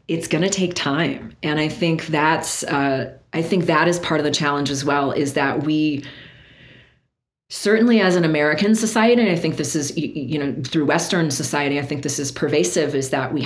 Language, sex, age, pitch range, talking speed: English, female, 40-59, 140-170 Hz, 200 wpm